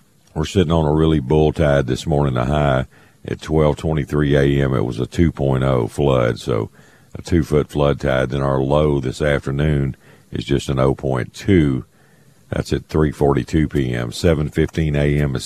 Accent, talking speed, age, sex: American, 155 wpm, 50-69, male